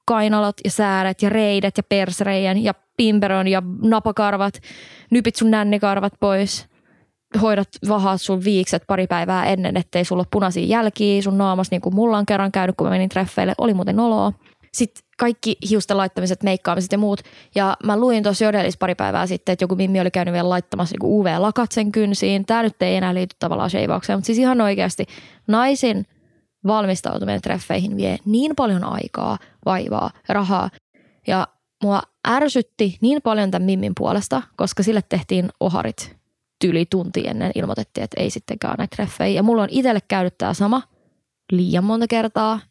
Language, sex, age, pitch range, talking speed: Finnish, female, 20-39, 185-215 Hz, 165 wpm